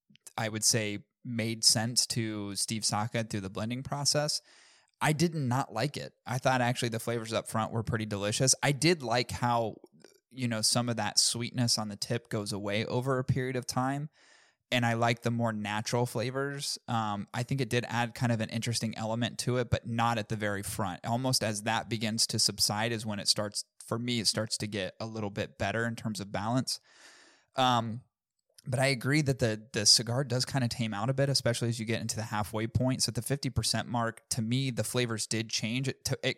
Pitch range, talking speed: 110-125 Hz, 220 wpm